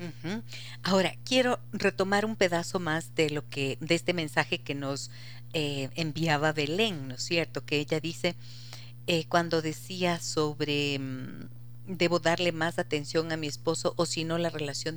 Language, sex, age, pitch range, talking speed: Spanish, female, 40-59, 120-200 Hz, 155 wpm